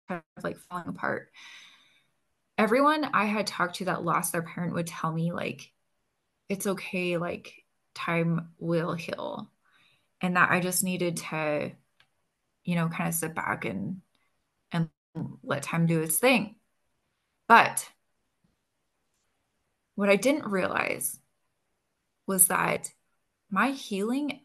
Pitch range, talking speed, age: 180-220 Hz, 130 wpm, 20-39